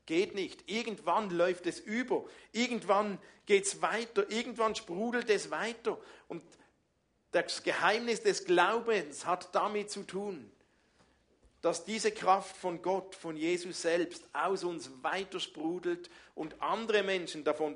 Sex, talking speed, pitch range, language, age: male, 130 wpm, 155-210 Hz, German, 50-69